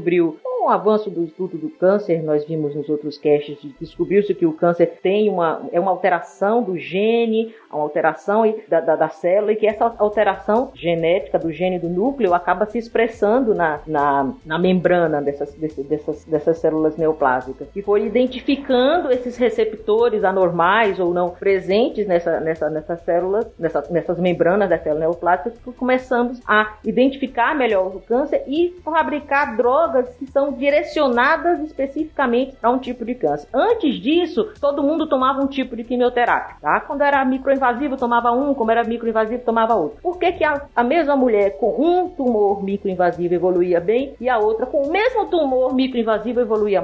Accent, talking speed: Brazilian, 170 wpm